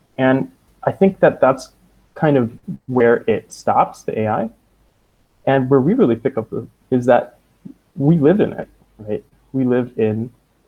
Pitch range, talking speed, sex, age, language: 105-130 Hz, 165 wpm, male, 20-39, English